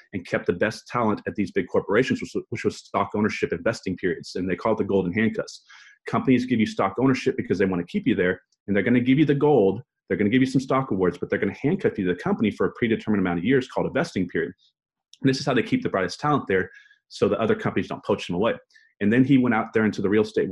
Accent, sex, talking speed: American, male, 290 wpm